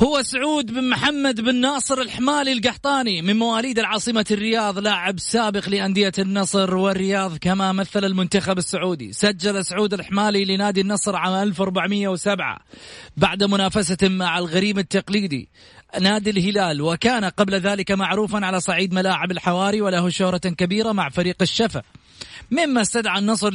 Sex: male